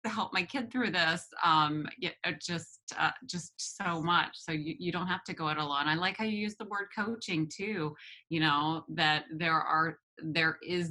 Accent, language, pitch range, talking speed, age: American, English, 145-175 Hz, 200 wpm, 20-39